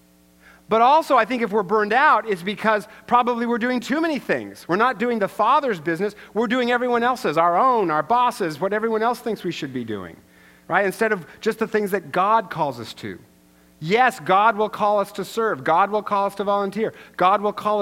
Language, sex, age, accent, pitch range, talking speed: English, male, 50-69, American, 180-235 Hz, 220 wpm